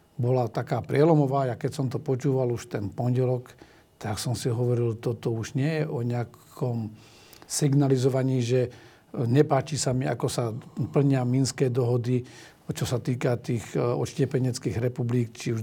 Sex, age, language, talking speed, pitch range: male, 50-69, Slovak, 150 wpm, 120-145 Hz